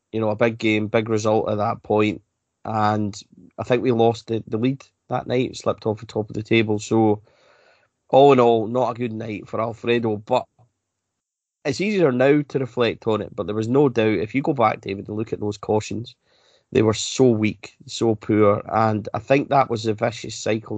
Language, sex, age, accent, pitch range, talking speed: English, male, 30-49, British, 105-115 Hz, 215 wpm